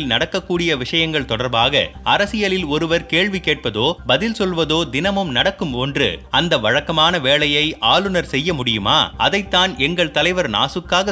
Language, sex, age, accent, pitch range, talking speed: Tamil, male, 30-49, native, 145-185 Hz, 120 wpm